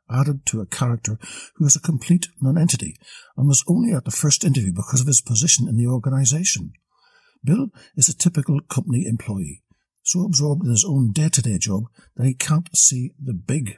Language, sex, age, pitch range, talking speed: English, male, 60-79, 115-165 Hz, 185 wpm